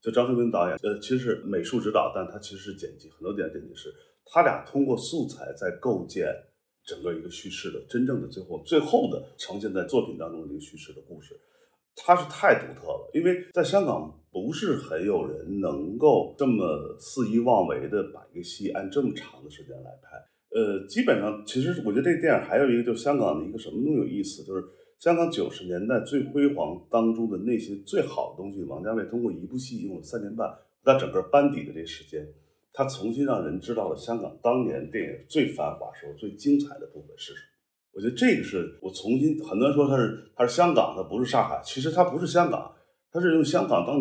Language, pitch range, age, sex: Chinese, 115-180 Hz, 30-49, male